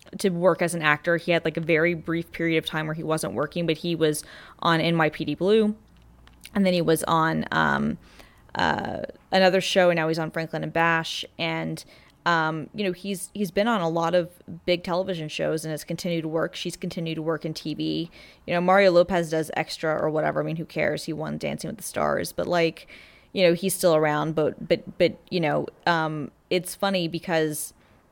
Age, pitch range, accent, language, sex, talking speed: 20-39, 155-180 Hz, American, English, female, 210 wpm